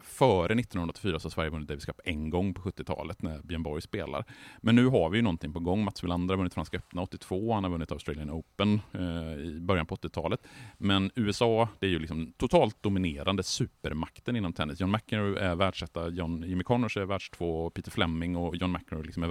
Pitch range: 80-105 Hz